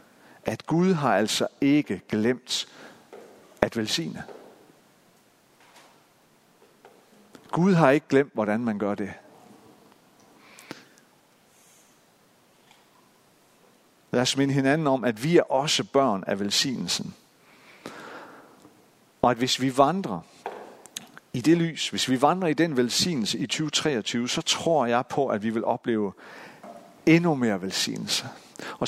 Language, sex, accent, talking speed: Danish, male, native, 115 wpm